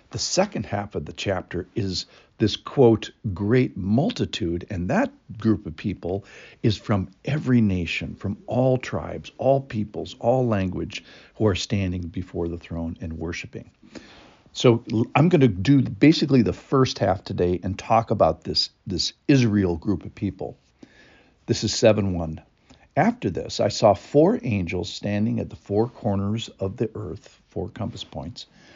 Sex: male